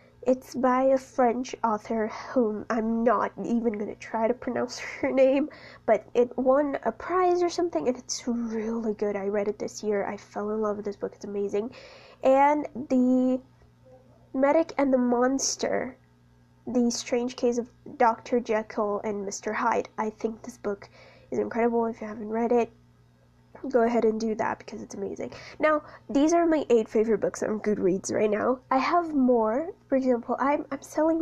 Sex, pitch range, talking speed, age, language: female, 215-260 Hz, 180 wpm, 10-29, English